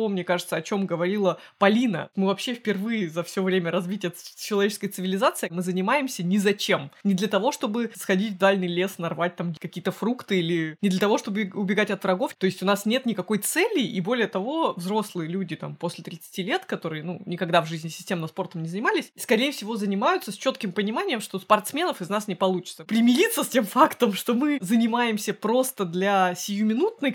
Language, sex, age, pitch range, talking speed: Russian, female, 20-39, 180-220 Hz, 190 wpm